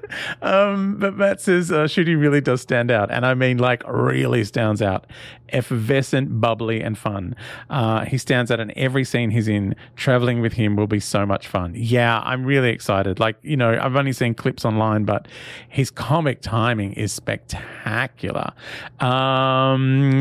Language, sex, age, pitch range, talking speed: English, male, 30-49, 115-145 Hz, 170 wpm